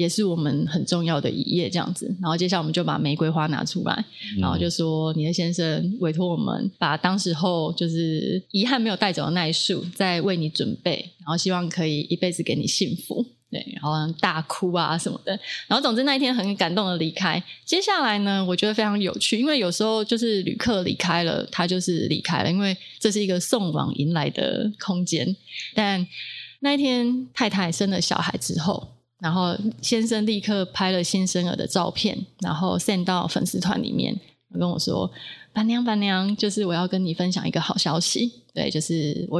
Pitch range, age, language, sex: 170-205 Hz, 20-39, Chinese, female